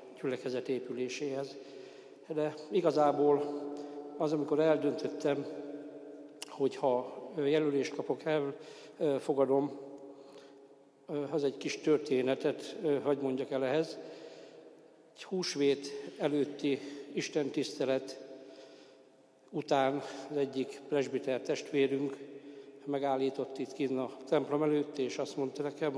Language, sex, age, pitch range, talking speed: Hungarian, male, 60-79, 135-145 Hz, 90 wpm